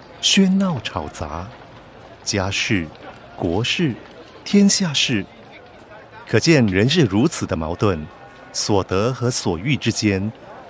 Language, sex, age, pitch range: Chinese, male, 50-69, 95-140 Hz